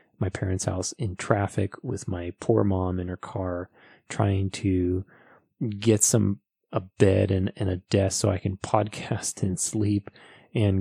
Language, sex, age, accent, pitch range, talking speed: English, male, 30-49, American, 95-110 Hz, 160 wpm